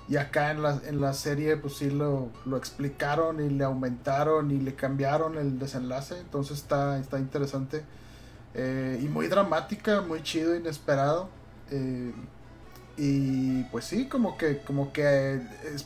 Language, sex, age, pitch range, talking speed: Spanish, male, 30-49, 135-165 Hz, 150 wpm